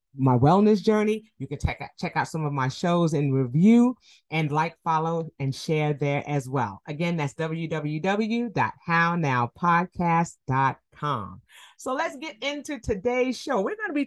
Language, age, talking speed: English, 30-49, 150 wpm